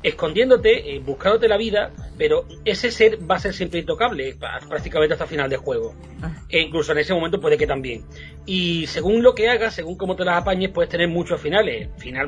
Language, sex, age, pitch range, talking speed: Spanish, male, 30-49, 145-195 Hz, 195 wpm